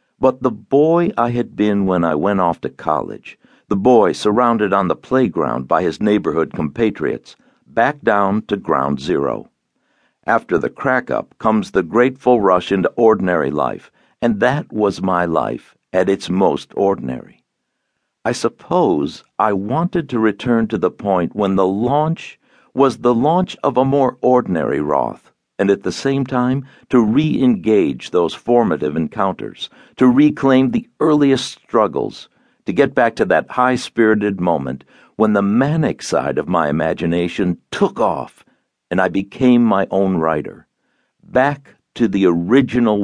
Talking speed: 150 wpm